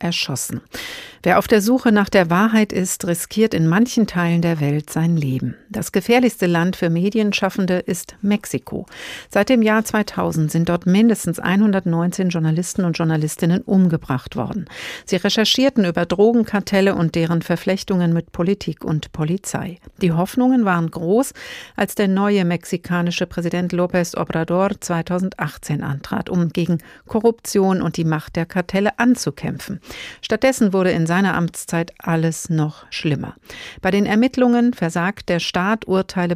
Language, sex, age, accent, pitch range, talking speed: German, female, 50-69, German, 170-210 Hz, 140 wpm